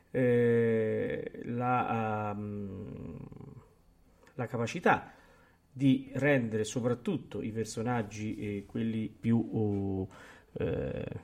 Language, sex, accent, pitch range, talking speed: Italian, male, native, 115-140 Hz, 70 wpm